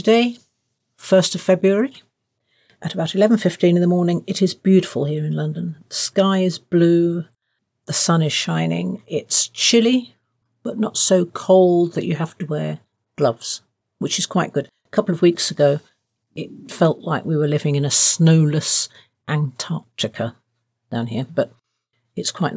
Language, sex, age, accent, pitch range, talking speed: English, female, 50-69, British, 130-185 Hz, 160 wpm